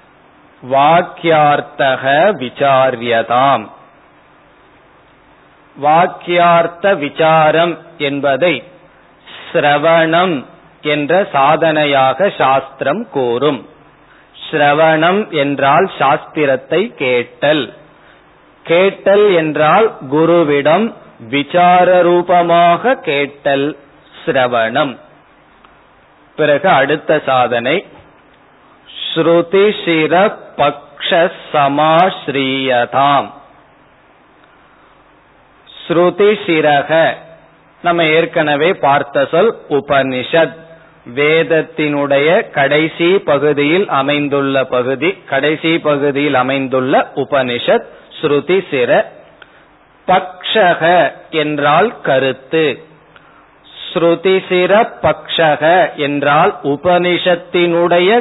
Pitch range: 140-170 Hz